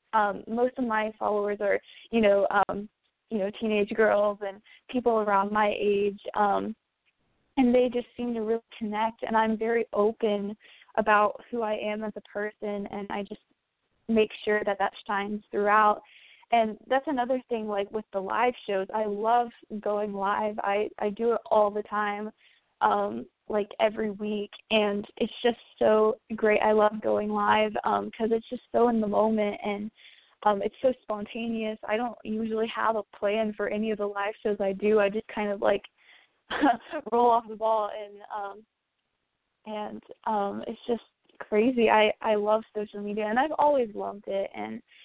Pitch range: 205-225 Hz